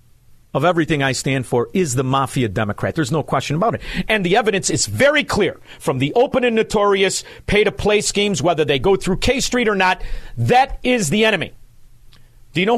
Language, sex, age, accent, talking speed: English, male, 50-69, American, 195 wpm